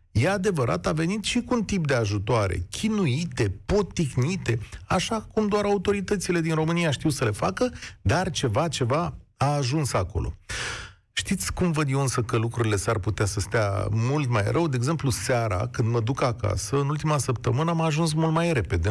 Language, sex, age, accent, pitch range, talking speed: Romanian, male, 40-59, native, 115-155 Hz, 180 wpm